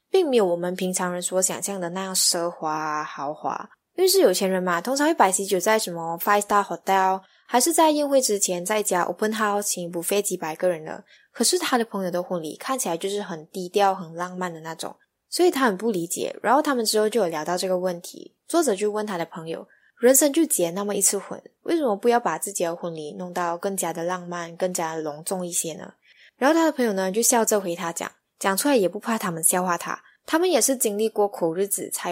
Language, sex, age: Chinese, female, 10-29